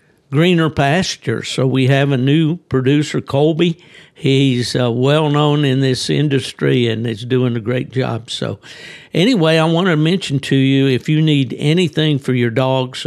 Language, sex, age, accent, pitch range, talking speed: English, male, 60-79, American, 130-150 Hz, 170 wpm